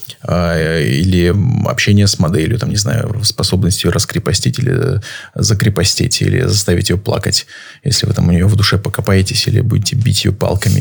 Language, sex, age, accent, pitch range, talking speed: Russian, male, 20-39, native, 100-120 Hz, 160 wpm